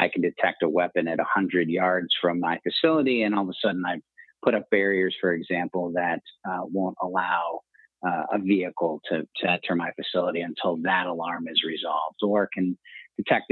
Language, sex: English, male